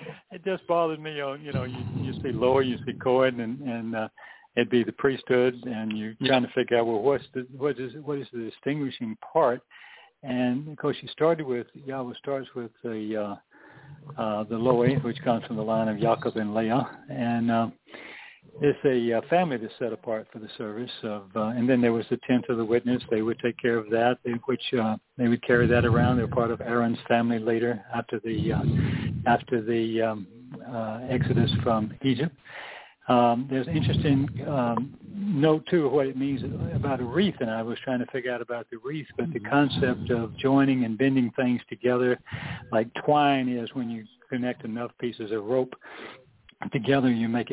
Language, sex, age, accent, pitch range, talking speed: English, male, 60-79, American, 115-135 Hz, 200 wpm